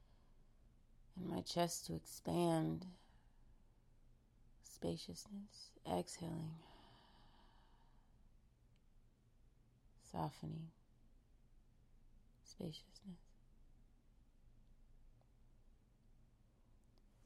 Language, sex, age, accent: English, female, 30-49, American